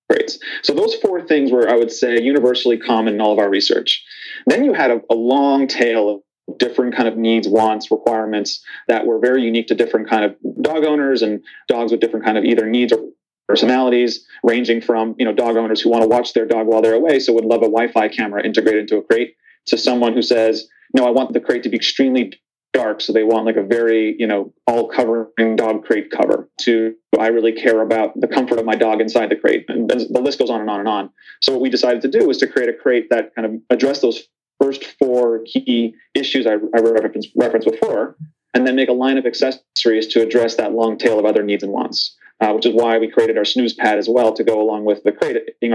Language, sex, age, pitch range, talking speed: English, male, 30-49, 110-125 Hz, 235 wpm